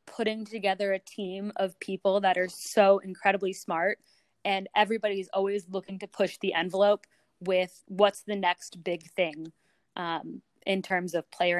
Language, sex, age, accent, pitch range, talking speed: English, female, 20-39, American, 180-205 Hz, 155 wpm